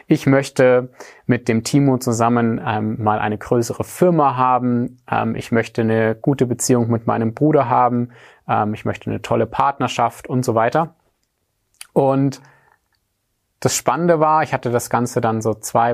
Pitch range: 115-130 Hz